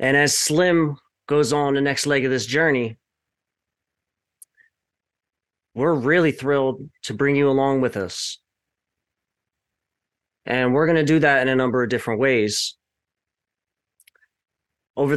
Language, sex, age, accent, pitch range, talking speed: English, male, 30-49, American, 125-155 Hz, 125 wpm